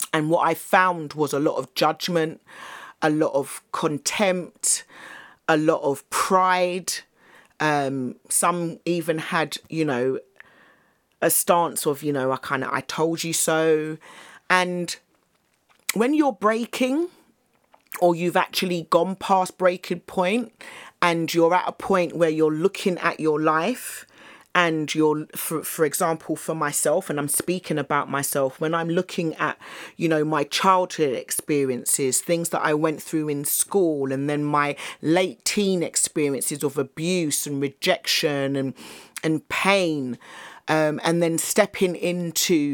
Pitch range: 150-180 Hz